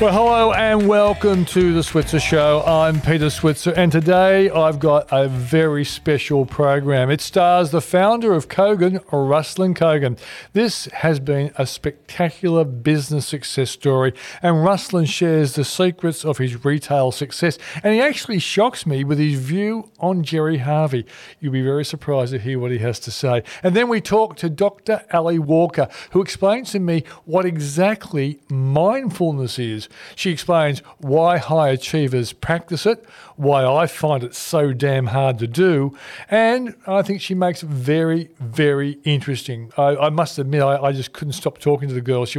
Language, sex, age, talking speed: English, male, 40-59, 170 wpm